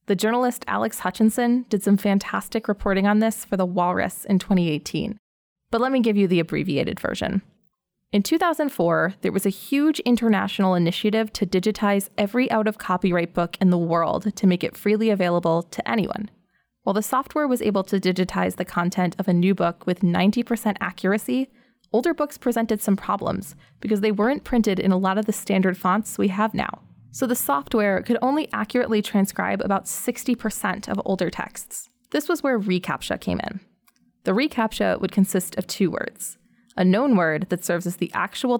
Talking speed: 175 wpm